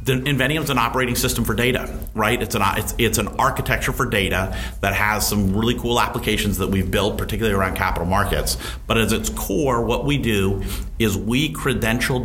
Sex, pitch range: male, 100-120 Hz